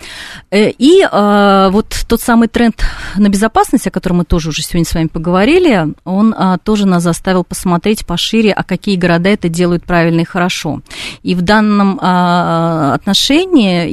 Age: 30-49